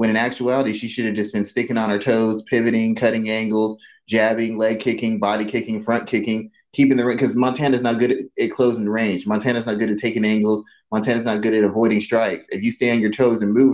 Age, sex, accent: 20-39, male, American